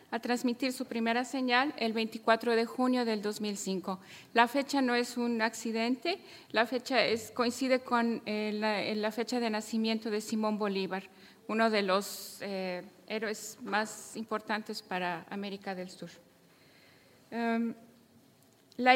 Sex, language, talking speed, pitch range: female, German, 140 wpm, 215-260 Hz